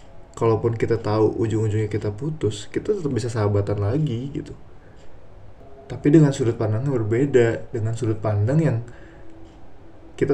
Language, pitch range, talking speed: Indonesian, 105-120 Hz, 130 wpm